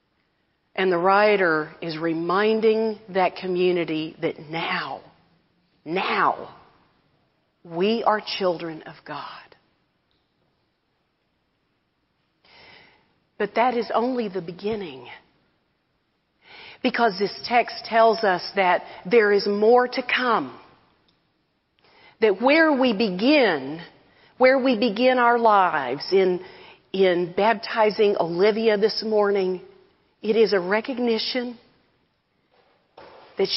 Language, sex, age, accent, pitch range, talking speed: English, female, 40-59, American, 185-230 Hz, 95 wpm